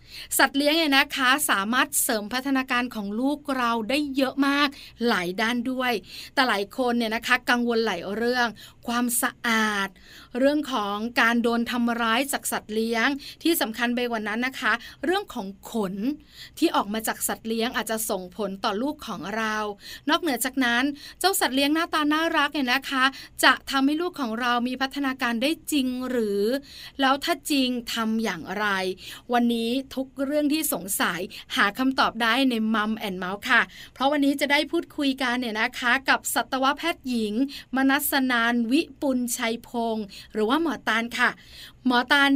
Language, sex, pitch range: Thai, female, 225-275 Hz